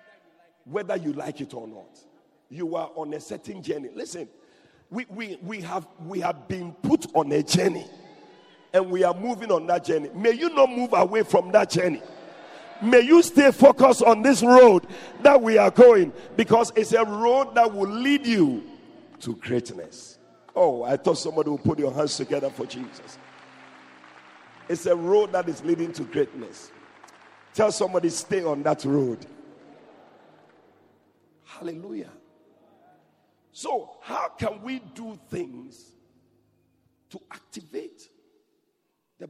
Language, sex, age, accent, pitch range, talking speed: English, male, 50-69, Nigerian, 170-280 Hz, 145 wpm